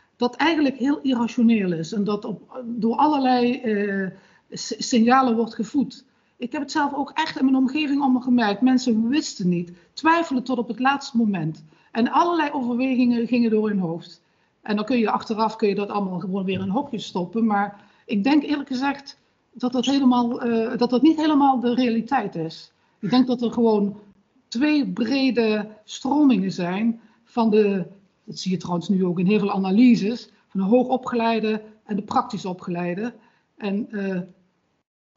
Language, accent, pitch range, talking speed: Dutch, Dutch, 195-250 Hz, 170 wpm